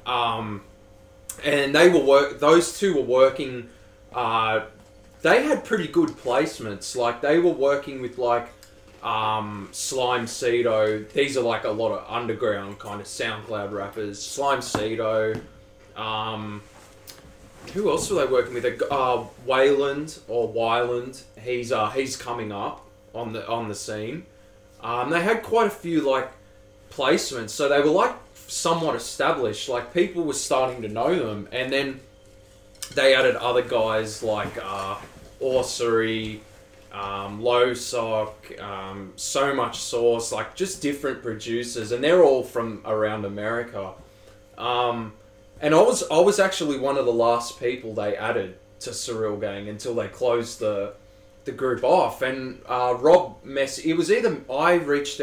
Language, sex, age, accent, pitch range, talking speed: English, male, 20-39, Australian, 105-130 Hz, 150 wpm